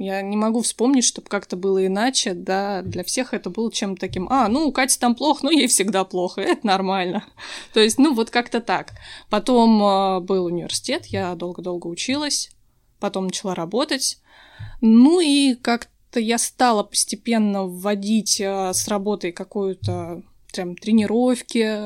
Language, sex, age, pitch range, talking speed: Russian, female, 20-39, 195-245 Hz, 150 wpm